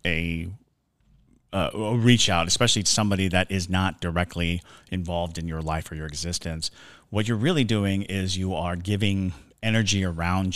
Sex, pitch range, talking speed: male, 85-110 Hz, 165 wpm